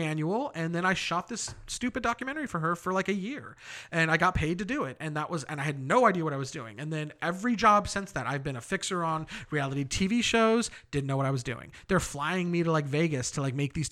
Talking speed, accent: 270 wpm, American